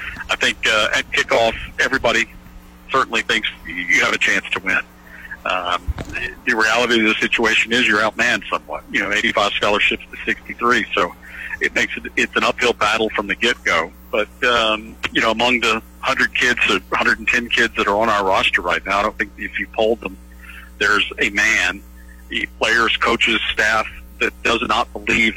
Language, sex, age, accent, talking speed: English, male, 50-69, American, 180 wpm